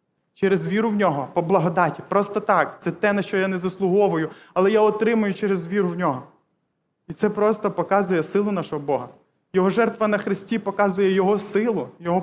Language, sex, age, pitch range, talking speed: Ukrainian, male, 20-39, 175-210 Hz, 180 wpm